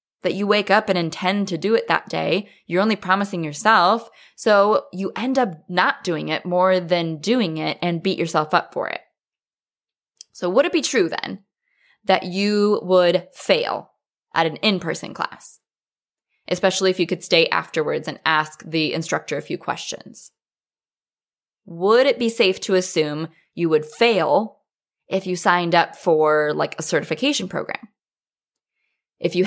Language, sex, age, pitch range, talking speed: English, female, 20-39, 170-245 Hz, 160 wpm